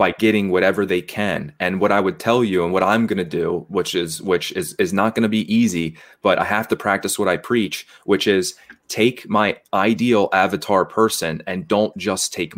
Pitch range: 90-110 Hz